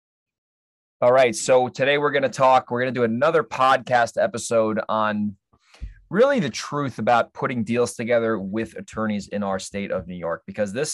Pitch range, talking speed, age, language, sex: 105-135 Hz, 180 wpm, 20-39, English, male